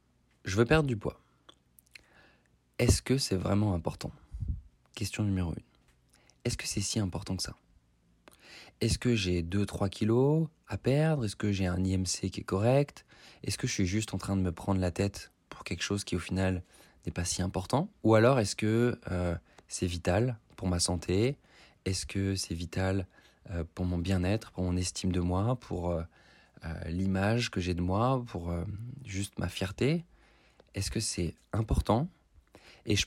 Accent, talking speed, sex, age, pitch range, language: French, 180 wpm, male, 20-39, 85-110 Hz, French